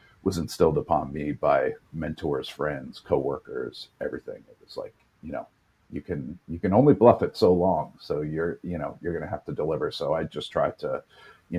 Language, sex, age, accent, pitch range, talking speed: English, male, 50-69, American, 85-110 Hz, 195 wpm